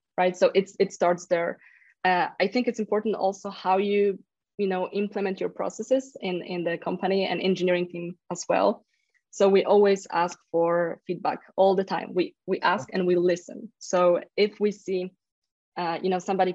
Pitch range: 175-205 Hz